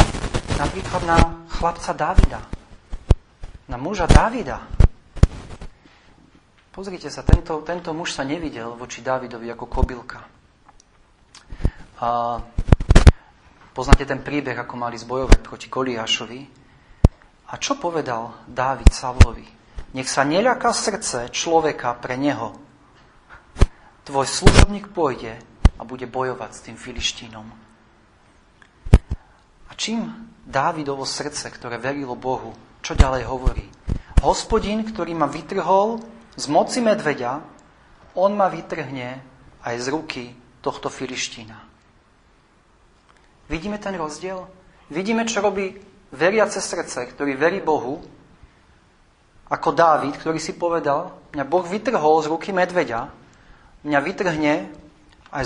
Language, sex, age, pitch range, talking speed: Slovak, male, 40-59, 120-170 Hz, 105 wpm